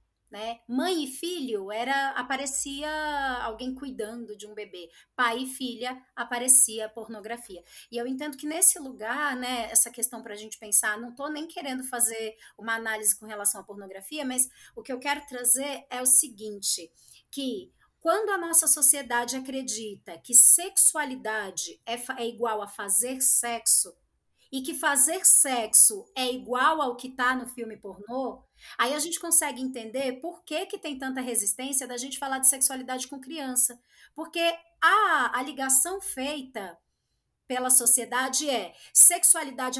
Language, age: Portuguese, 20-39